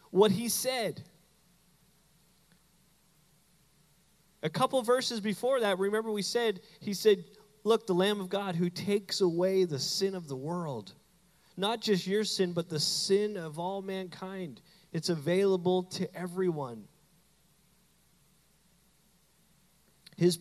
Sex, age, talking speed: male, 30-49, 120 wpm